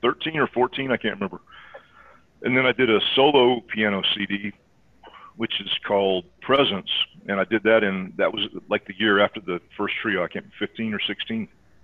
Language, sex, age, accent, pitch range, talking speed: English, male, 40-59, American, 95-115 Hz, 195 wpm